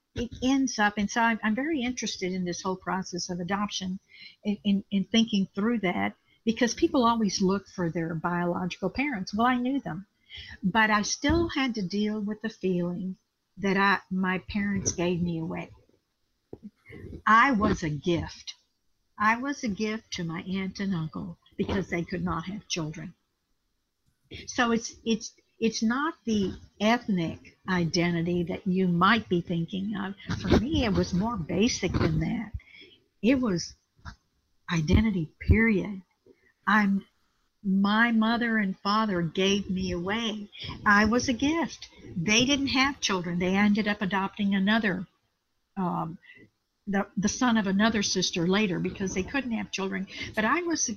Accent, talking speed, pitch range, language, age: American, 155 wpm, 185-225 Hz, English, 60-79